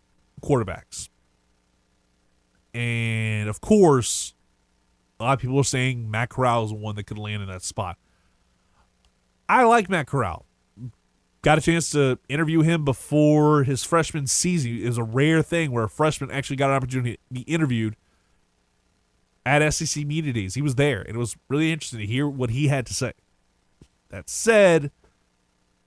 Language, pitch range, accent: English, 90-145 Hz, American